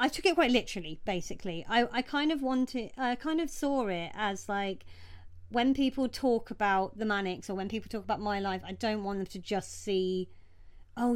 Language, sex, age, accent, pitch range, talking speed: English, female, 30-49, British, 185-230 Hz, 210 wpm